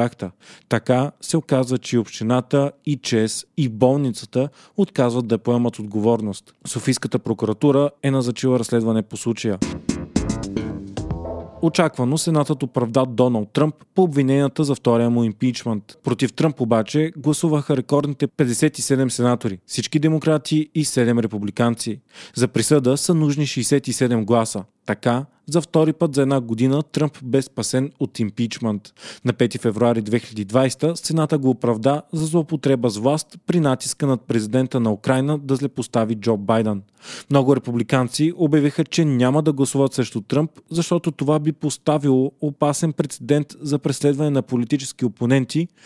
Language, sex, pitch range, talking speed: Bulgarian, male, 120-150 Hz, 130 wpm